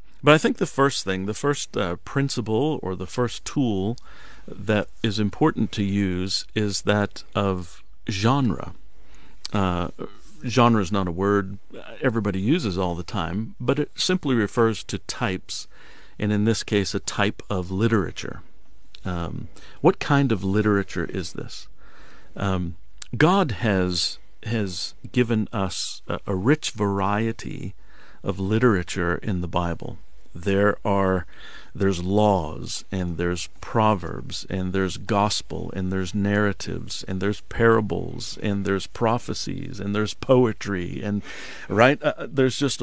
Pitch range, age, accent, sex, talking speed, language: 95-115 Hz, 50-69, American, male, 135 wpm, English